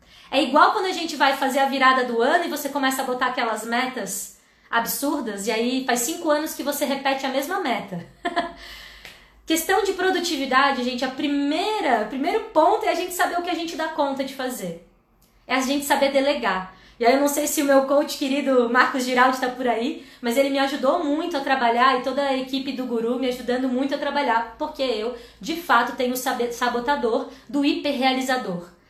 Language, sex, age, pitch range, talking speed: Portuguese, female, 20-39, 250-305 Hz, 205 wpm